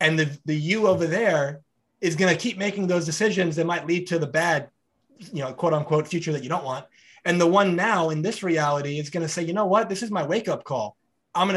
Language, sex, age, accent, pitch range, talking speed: English, male, 20-39, American, 140-170 Hz, 260 wpm